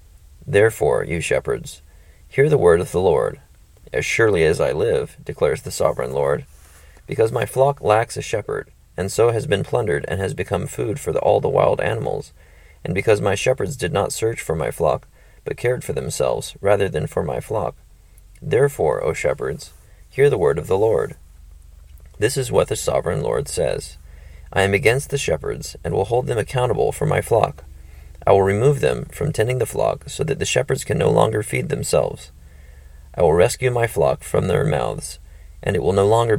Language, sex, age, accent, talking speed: English, male, 30-49, American, 190 wpm